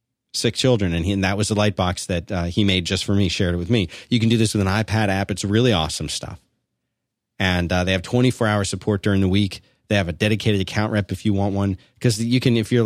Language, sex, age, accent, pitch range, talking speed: English, male, 40-59, American, 95-120 Hz, 265 wpm